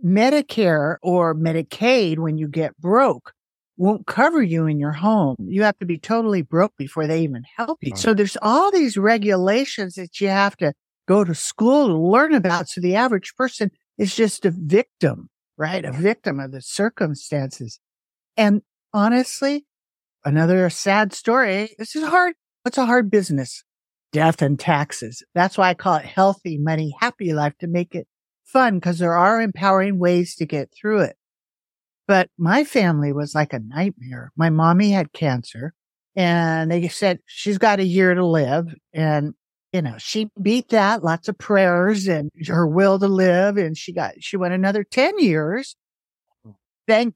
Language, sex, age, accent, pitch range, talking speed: English, male, 50-69, American, 160-210 Hz, 170 wpm